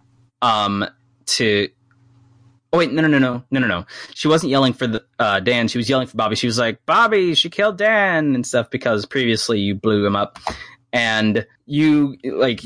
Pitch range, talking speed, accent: 110-130 Hz, 190 wpm, American